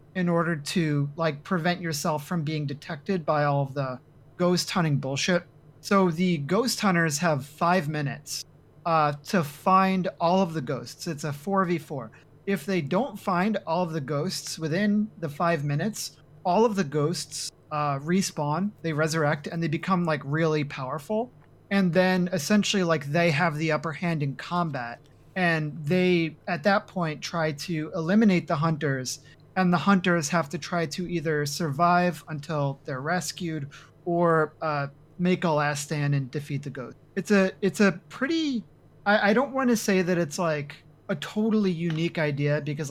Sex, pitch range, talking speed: male, 150-185 Hz, 170 wpm